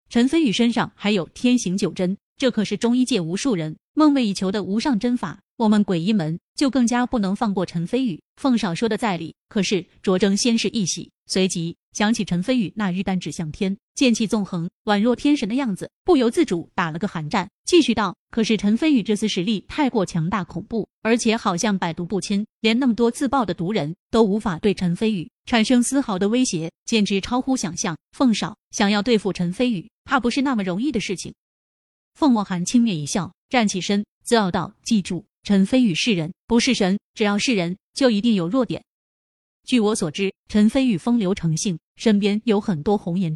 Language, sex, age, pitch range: Chinese, female, 30-49, 190-240 Hz